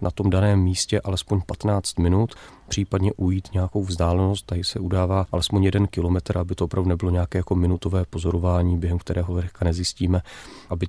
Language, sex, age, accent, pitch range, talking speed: Czech, male, 30-49, native, 90-100 Hz, 165 wpm